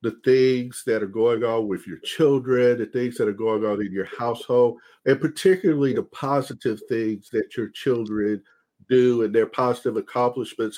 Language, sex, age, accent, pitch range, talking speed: English, male, 50-69, American, 120-155 Hz, 175 wpm